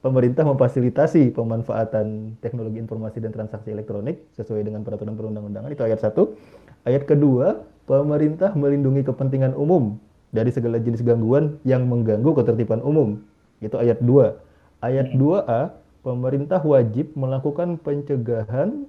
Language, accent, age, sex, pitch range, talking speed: Indonesian, native, 30-49, male, 115-145 Hz, 120 wpm